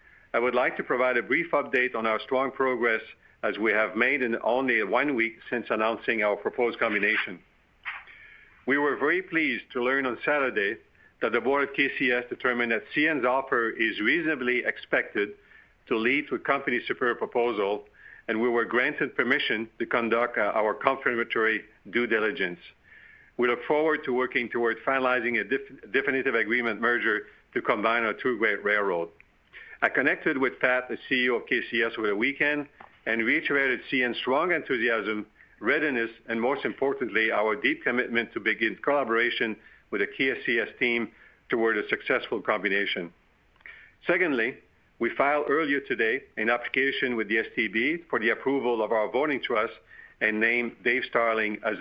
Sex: male